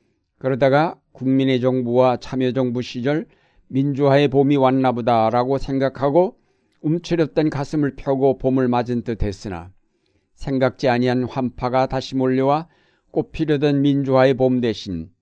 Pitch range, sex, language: 120-145 Hz, male, Korean